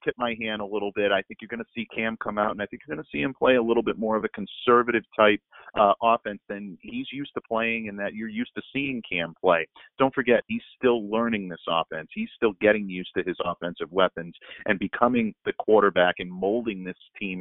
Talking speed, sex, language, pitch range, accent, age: 240 wpm, male, English, 100-120 Hz, American, 40-59